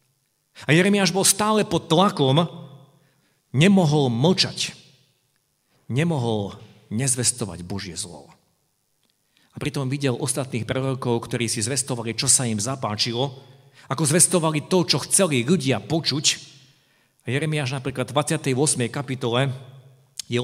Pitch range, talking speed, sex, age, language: 115-155 Hz, 110 wpm, male, 50-69, Slovak